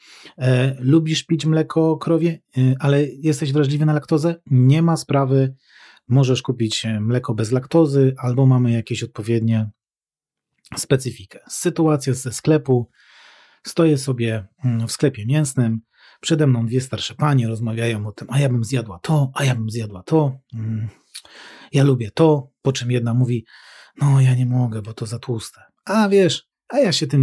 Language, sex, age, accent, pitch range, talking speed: Polish, male, 30-49, native, 120-155 Hz, 150 wpm